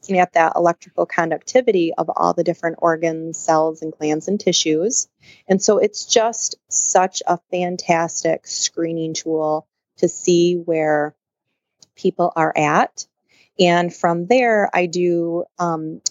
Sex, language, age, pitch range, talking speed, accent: female, English, 30-49, 160-180 Hz, 130 wpm, American